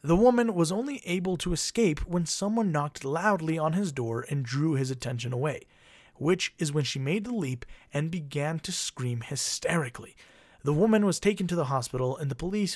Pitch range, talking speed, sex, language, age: 130-180 Hz, 195 wpm, male, English, 30-49